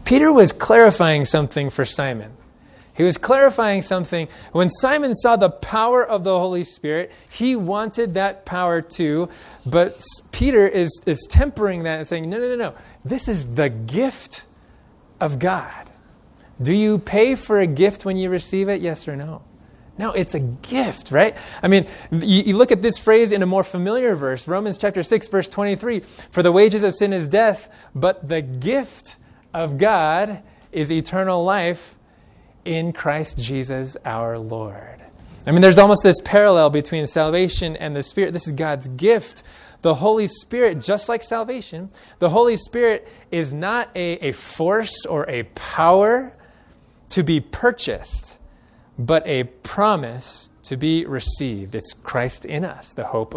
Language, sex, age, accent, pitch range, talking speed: English, male, 20-39, American, 150-210 Hz, 165 wpm